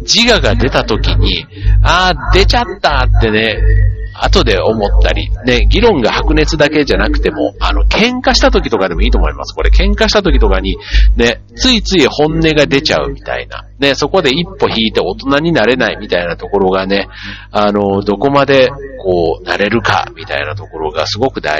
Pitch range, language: 100-150 Hz, Japanese